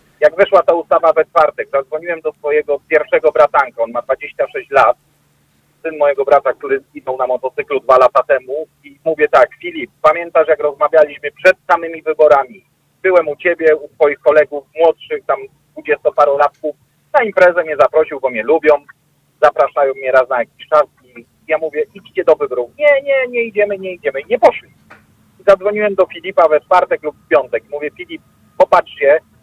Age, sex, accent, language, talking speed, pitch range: 40-59, male, native, Polish, 175 wpm, 150-210 Hz